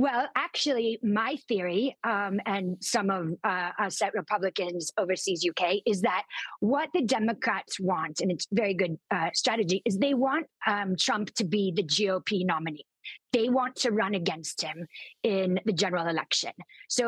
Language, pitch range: English, 190-235 Hz